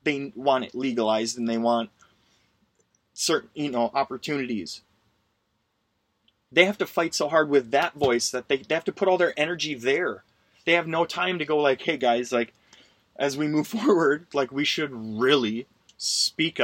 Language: English